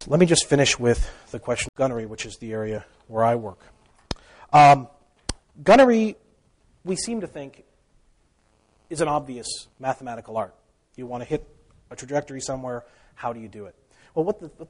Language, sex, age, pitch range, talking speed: English, male, 40-59, 120-165 Hz, 170 wpm